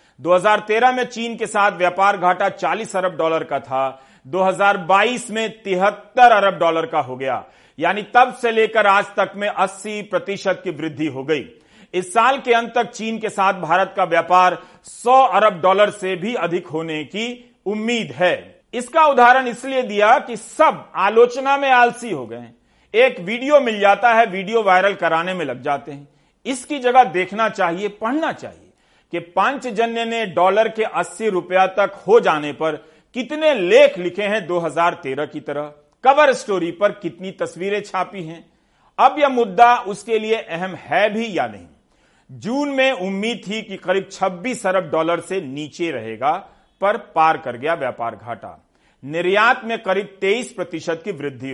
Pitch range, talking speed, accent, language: 170-230 Hz, 165 wpm, native, Hindi